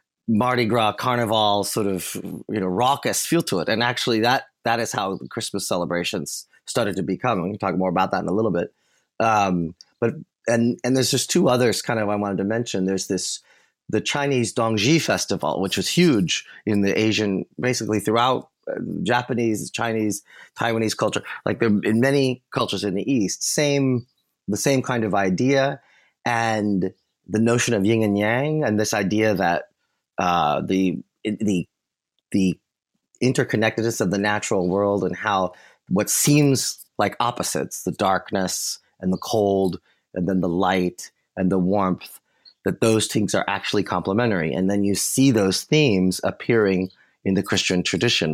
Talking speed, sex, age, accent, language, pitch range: 165 wpm, male, 30-49, American, English, 95-115 Hz